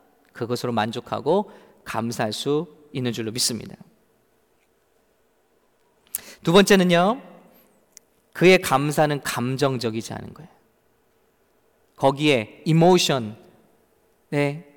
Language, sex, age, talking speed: English, male, 40-59, 65 wpm